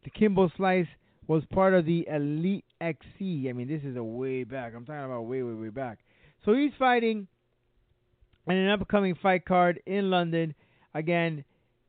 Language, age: English, 20-39